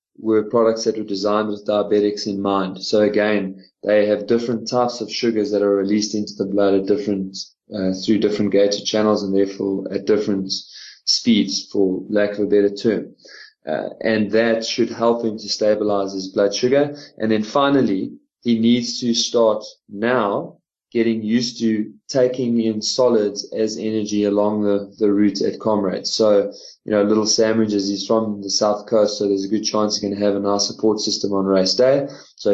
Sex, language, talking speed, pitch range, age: male, English, 185 wpm, 100-110 Hz, 20-39